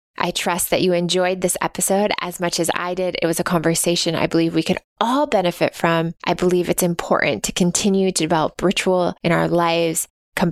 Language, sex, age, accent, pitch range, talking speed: English, female, 20-39, American, 170-195 Hz, 205 wpm